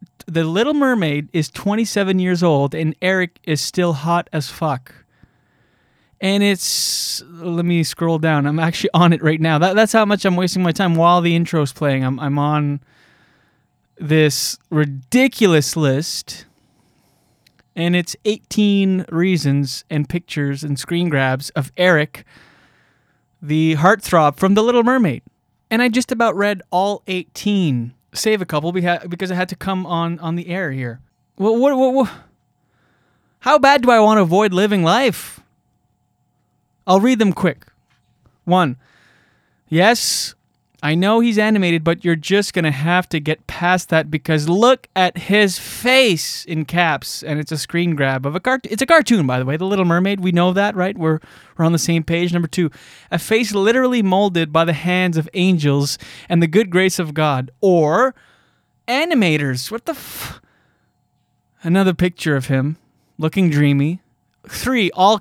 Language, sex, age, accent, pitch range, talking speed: English, male, 20-39, American, 155-195 Hz, 160 wpm